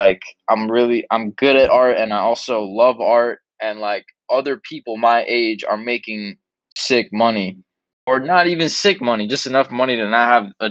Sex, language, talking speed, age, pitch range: male, English, 190 wpm, 20-39, 110-125 Hz